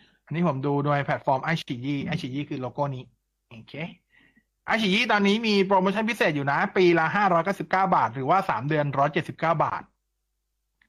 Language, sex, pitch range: Thai, male, 135-180 Hz